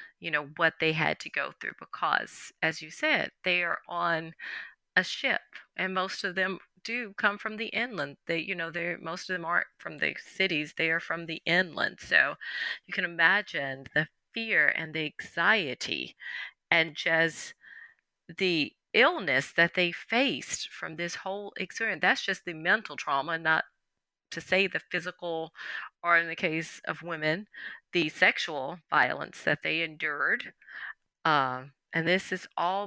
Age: 30-49